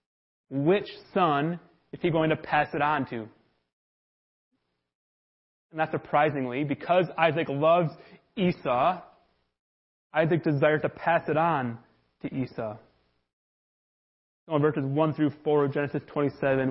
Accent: American